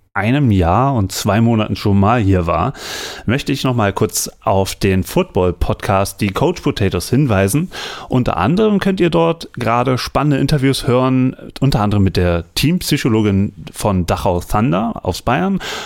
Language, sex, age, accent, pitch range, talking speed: German, male, 30-49, German, 105-150 Hz, 150 wpm